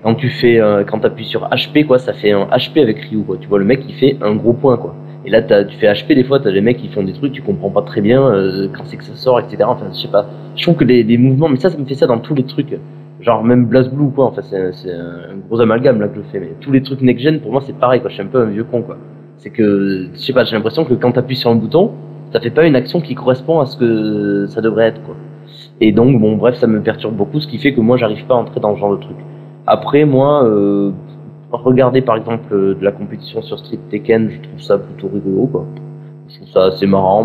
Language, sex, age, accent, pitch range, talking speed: French, male, 20-39, French, 105-145 Hz, 285 wpm